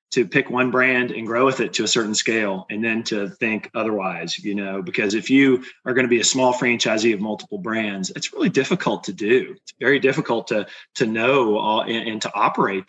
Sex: male